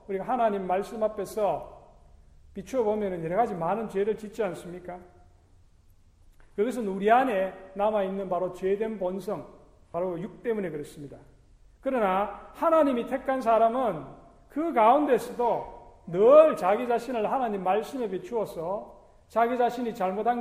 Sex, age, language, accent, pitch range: male, 40-59, Korean, native, 180-240 Hz